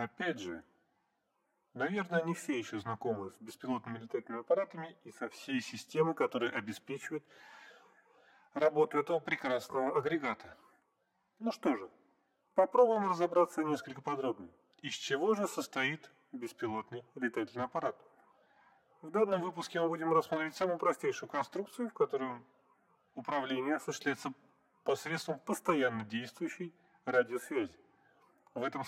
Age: 30-49